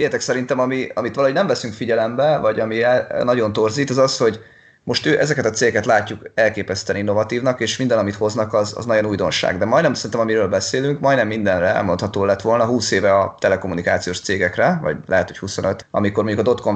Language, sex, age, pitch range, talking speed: Hungarian, male, 20-39, 105-130 Hz, 195 wpm